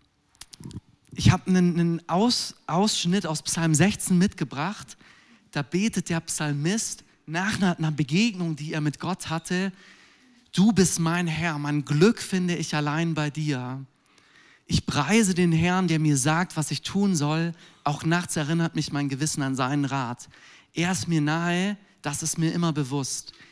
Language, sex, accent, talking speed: German, male, German, 155 wpm